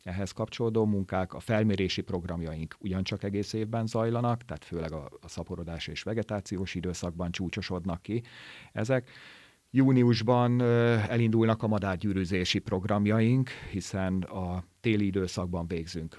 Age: 40-59